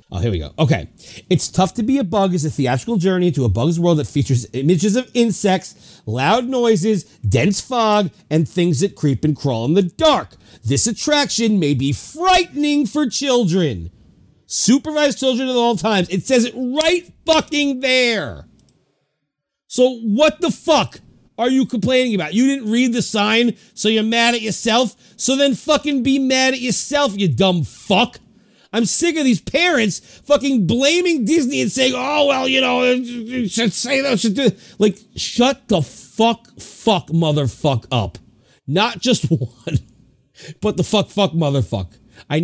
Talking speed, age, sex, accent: 170 wpm, 40-59, male, American